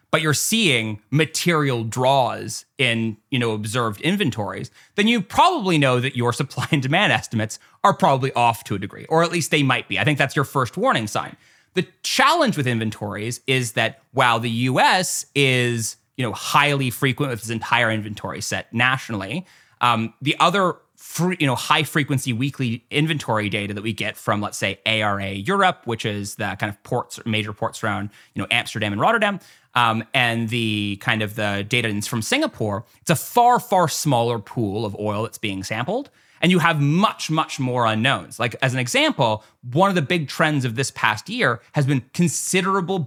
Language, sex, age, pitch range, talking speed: English, male, 30-49, 110-155 Hz, 190 wpm